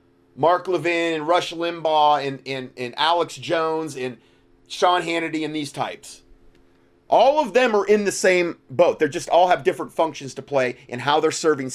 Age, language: 30-49, English